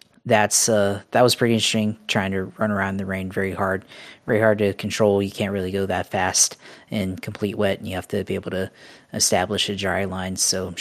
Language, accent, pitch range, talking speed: English, American, 95-110 Hz, 220 wpm